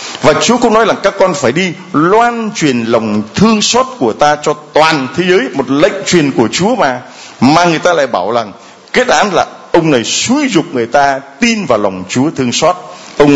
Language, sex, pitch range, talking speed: Vietnamese, male, 135-195 Hz, 215 wpm